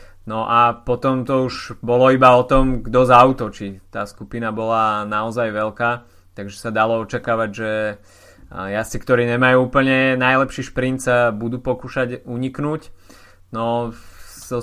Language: Slovak